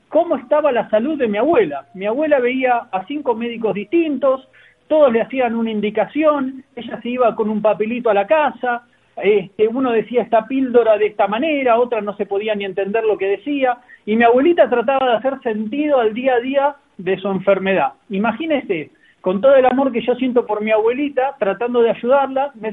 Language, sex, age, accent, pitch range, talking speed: Spanish, male, 40-59, Argentinian, 215-280 Hz, 195 wpm